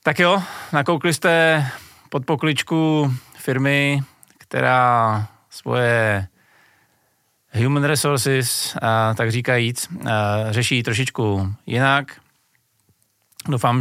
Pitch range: 105-125 Hz